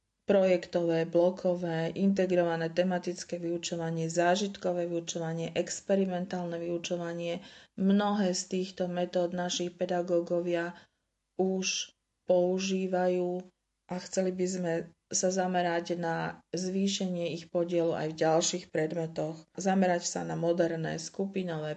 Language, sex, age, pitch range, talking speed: Slovak, female, 40-59, 165-180 Hz, 100 wpm